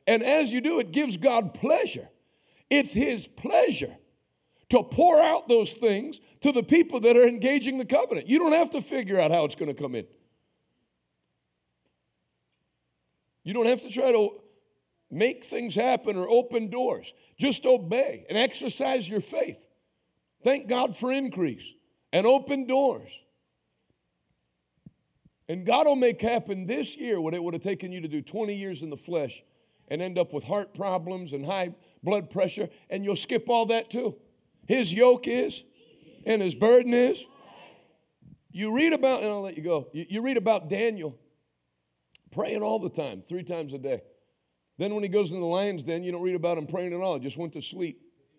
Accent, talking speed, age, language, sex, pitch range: American, 180 wpm, 60-79, English, male, 170-250 Hz